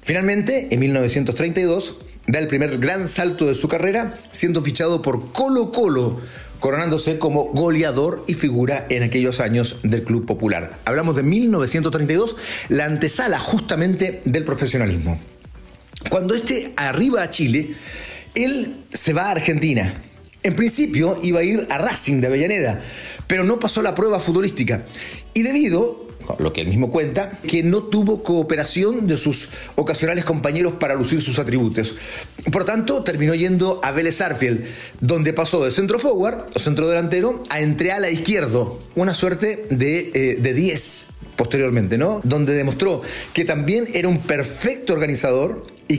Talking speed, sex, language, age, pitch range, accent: 150 wpm, male, Spanish, 40-59, 130-185 Hz, Mexican